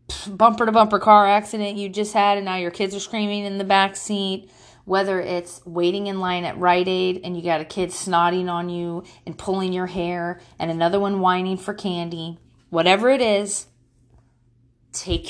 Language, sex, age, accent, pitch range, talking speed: English, female, 20-39, American, 170-245 Hz, 190 wpm